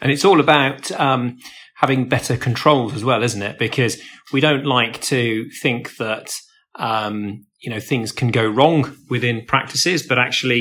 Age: 30-49